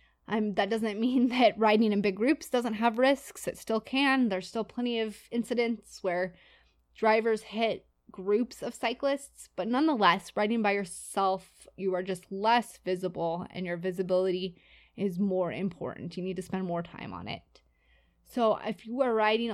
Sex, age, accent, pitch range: female, 20-39, American, 190-230 Hz